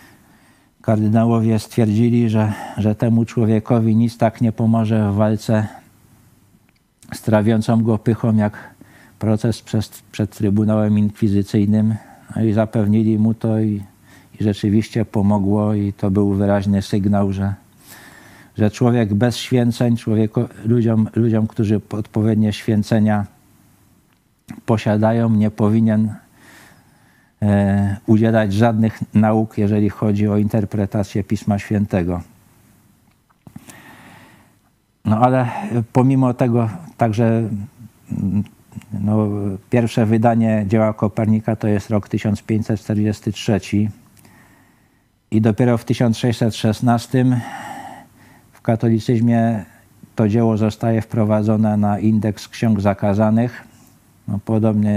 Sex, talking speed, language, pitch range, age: male, 95 wpm, Polish, 105-115 Hz, 50-69